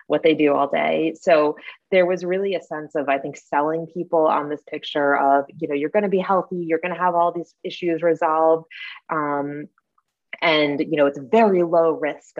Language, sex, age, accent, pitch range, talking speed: English, female, 20-39, American, 145-170 Hz, 200 wpm